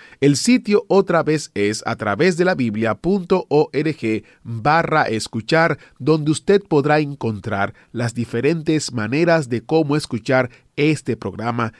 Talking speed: 120 wpm